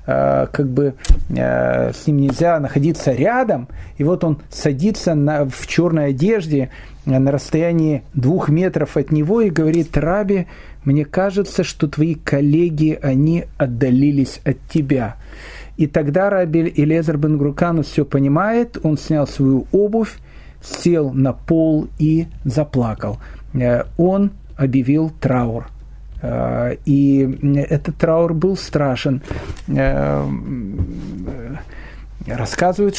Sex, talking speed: male, 105 wpm